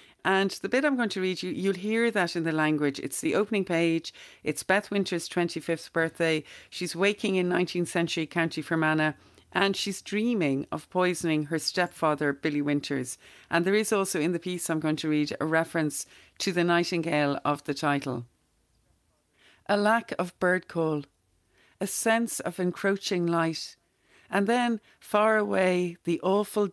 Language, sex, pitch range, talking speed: English, female, 150-190 Hz, 165 wpm